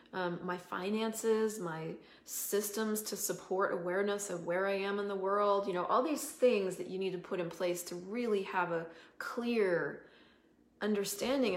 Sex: female